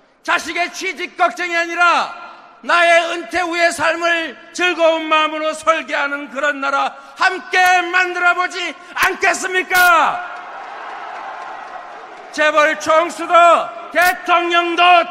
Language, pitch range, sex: Korean, 305-360 Hz, male